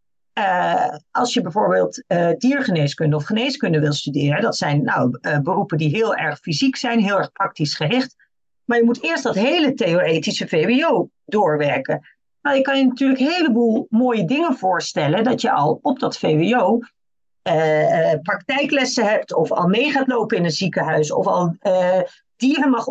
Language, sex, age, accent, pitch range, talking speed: Dutch, female, 40-59, Dutch, 185-245 Hz, 170 wpm